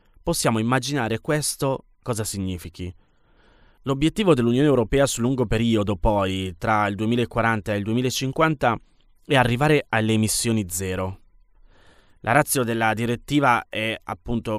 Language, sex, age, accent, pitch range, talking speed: Italian, male, 20-39, native, 100-125 Hz, 120 wpm